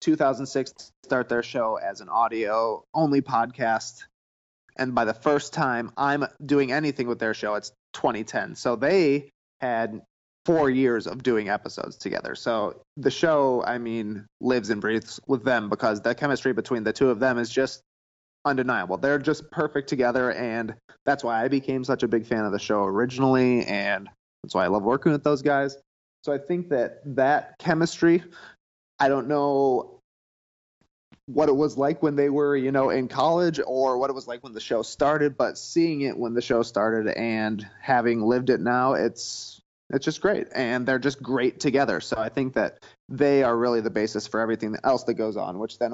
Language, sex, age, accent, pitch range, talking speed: English, male, 30-49, American, 110-140 Hz, 190 wpm